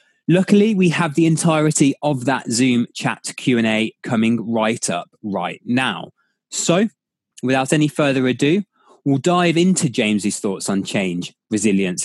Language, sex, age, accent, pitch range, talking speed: English, male, 20-39, British, 100-130 Hz, 140 wpm